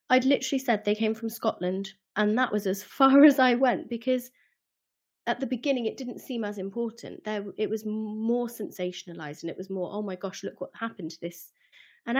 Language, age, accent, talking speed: English, 20-39, British, 205 wpm